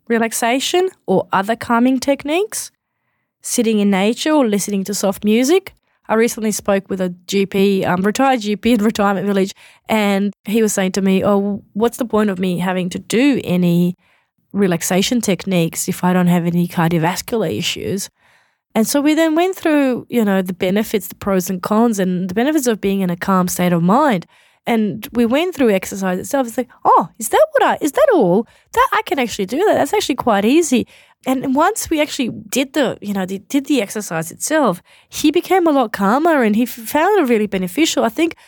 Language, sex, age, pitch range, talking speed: English, female, 30-49, 195-265 Hz, 200 wpm